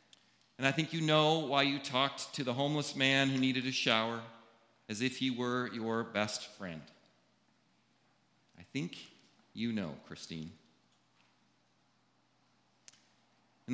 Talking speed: 125 wpm